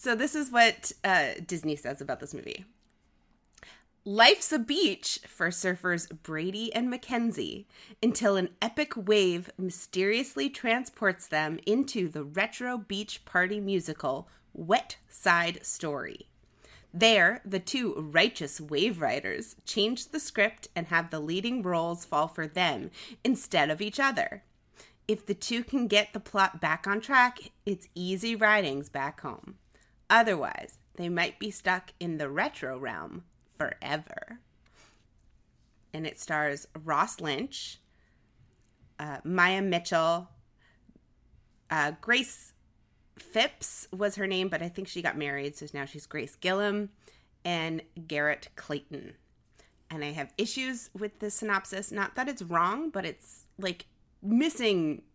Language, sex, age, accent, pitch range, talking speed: English, female, 30-49, American, 165-225 Hz, 135 wpm